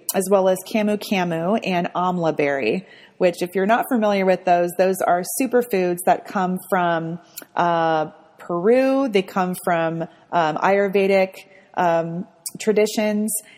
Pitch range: 175-215 Hz